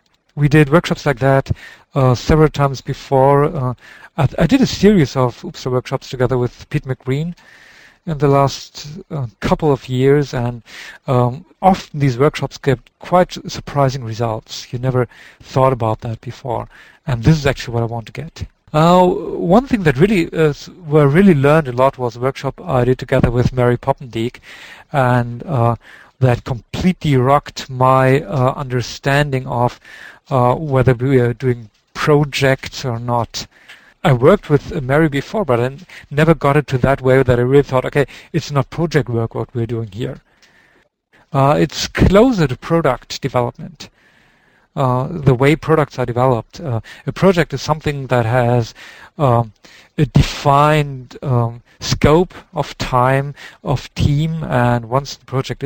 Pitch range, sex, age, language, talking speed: 125-150 Hz, male, 50-69, English, 160 wpm